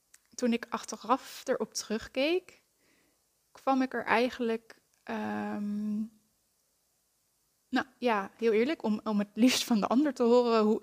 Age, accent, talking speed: 10-29, Dutch, 135 wpm